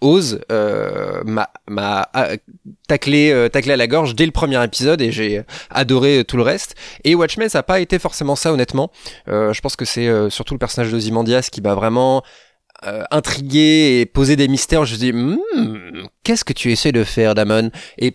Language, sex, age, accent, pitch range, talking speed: French, male, 20-39, French, 115-145 Hz, 215 wpm